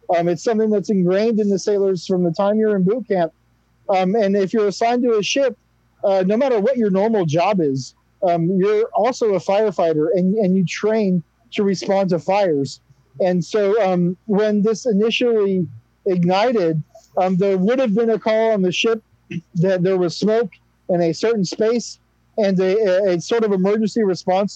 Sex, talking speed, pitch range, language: male, 185 wpm, 175-215 Hz, English